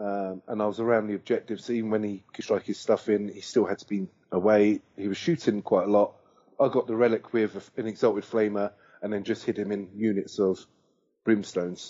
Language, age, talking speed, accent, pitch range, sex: English, 30-49, 220 wpm, British, 100-125 Hz, male